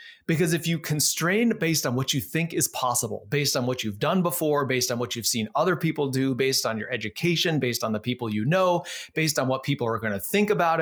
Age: 30-49